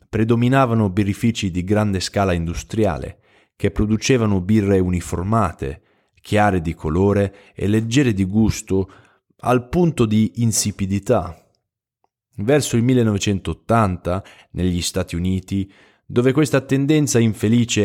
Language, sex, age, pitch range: Italian, male, 20-39, 90-115 Hz